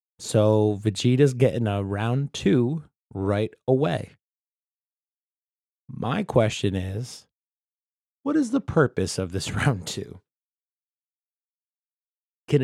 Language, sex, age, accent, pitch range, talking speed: English, male, 30-49, American, 110-140 Hz, 95 wpm